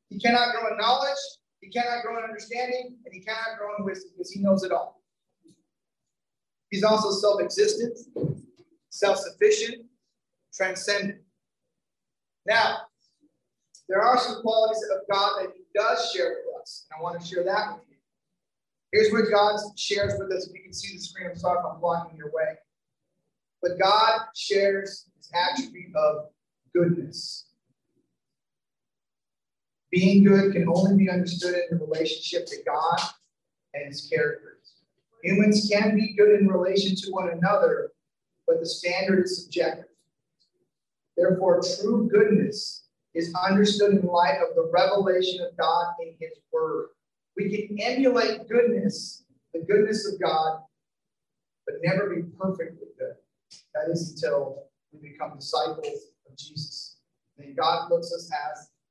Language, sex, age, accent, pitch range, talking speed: English, male, 30-49, American, 180-235 Hz, 145 wpm